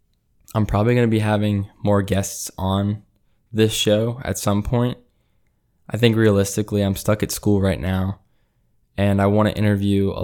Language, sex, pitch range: English, male, 95-105 Hz